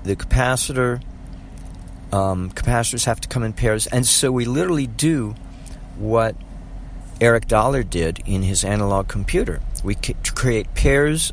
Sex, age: male, 50-69